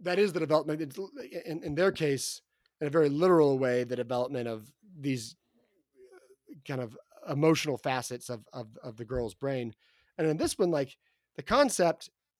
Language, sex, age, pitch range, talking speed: English, male, 30-49, 135-185 Hz, 165 wpm